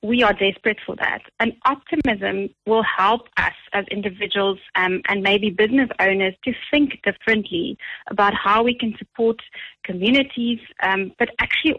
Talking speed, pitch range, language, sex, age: 150 wpm, 195-245 Hz, English, female, 30-49